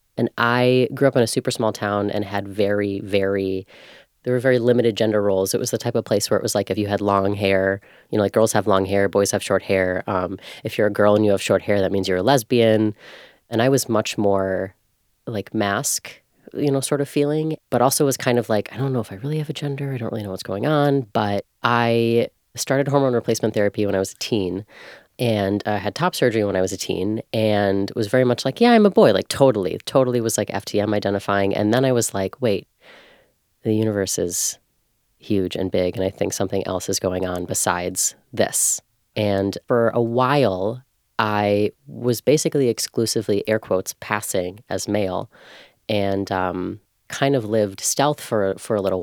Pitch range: 100-125 Hz